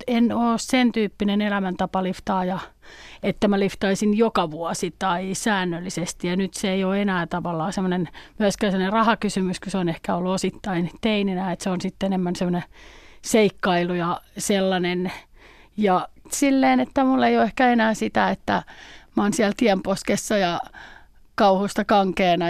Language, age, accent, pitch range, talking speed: Finnish, 30-49, native, 185-230 Hz, 145 wpm